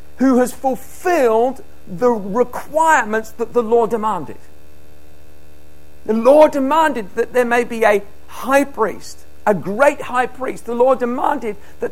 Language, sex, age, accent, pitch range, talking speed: English, male, 50-69, British, 175-275 Hz, 135 wpm